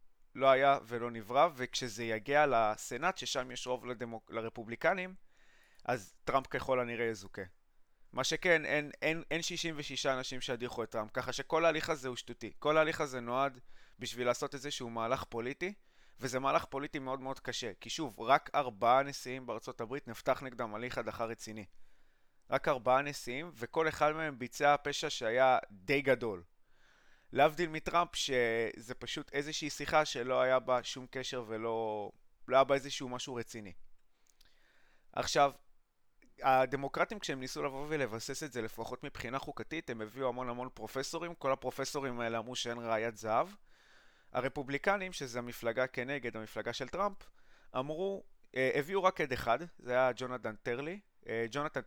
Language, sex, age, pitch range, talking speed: Hebrew, male, 20-39, 120-145 Hz, 145 wpm